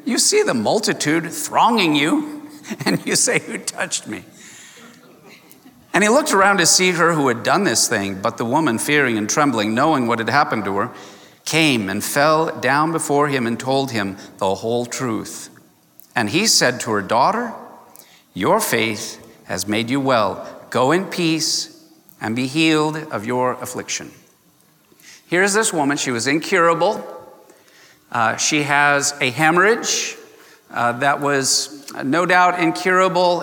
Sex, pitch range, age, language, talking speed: male, 135-195 Hz, 50-69, English, 155 wpm